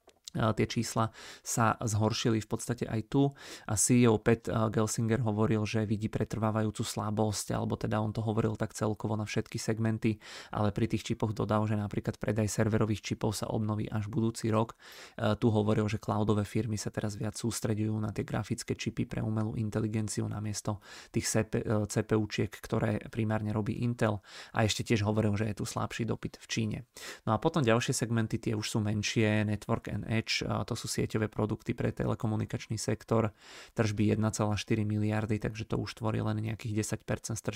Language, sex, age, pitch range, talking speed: Czech, male, 30-49, 105-115 Hz, 165 wpm